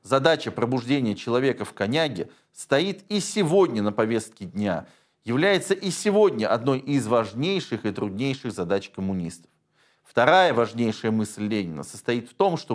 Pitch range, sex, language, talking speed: 110-170 Hz, male, Russian, 135 wpm